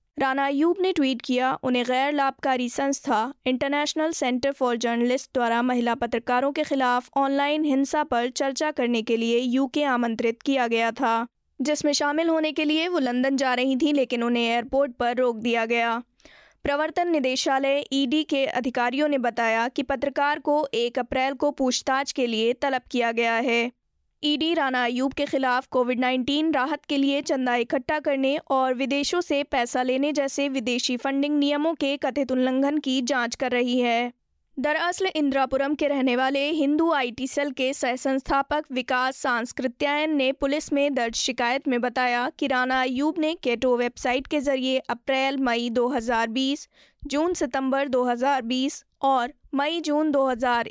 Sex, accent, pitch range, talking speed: female, native, 245-290 Hz, 160 wpm